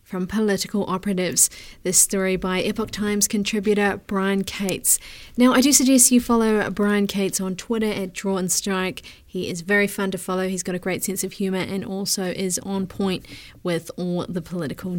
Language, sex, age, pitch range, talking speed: English, female, 30-49, 185-225 Hz, 190 wpm